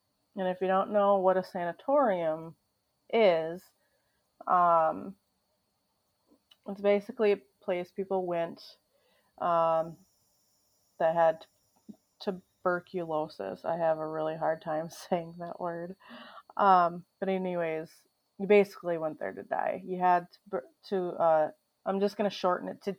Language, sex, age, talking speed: English, female, 30-49, 130 wpm